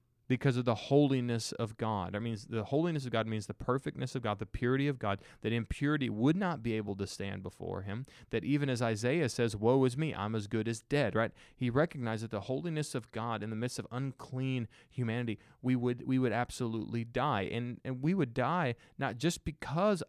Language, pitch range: English, 110-140 Hz